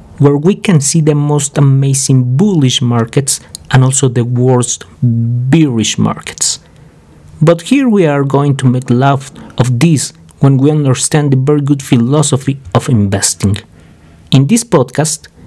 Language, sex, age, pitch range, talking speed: English, male, 50-69, 125-155 Hz, 145 wpm